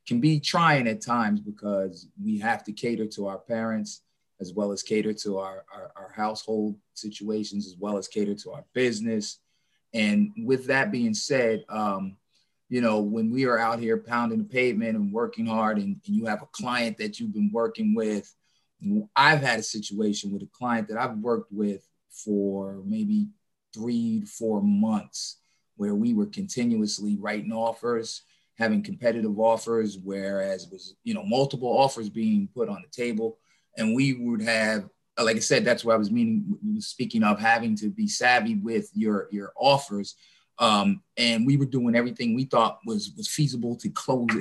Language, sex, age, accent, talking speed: English, male, 30-49, American, 180 wpm